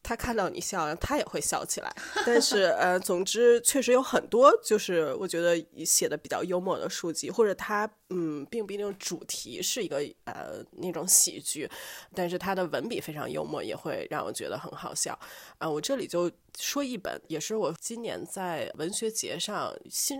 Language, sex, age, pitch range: Chinese, female, 20-39, 175-230 Hz